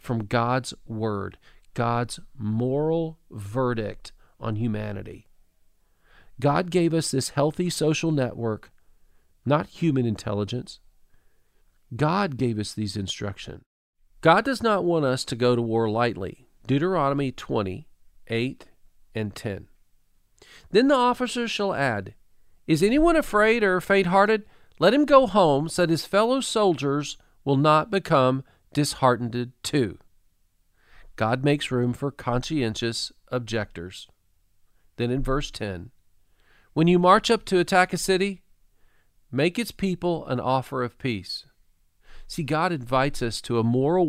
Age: 40-59